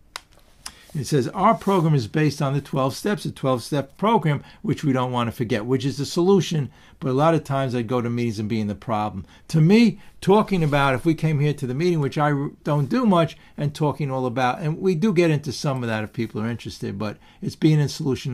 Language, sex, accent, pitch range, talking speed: English, male, American, 120-160 Hz, 240 wpm